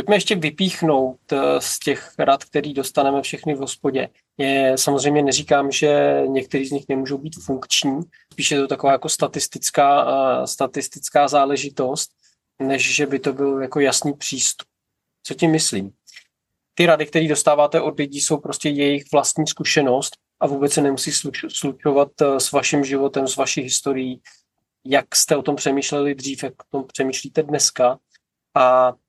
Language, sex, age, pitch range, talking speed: Czech, male, 20-39, 130-145 Hz, 155 wpm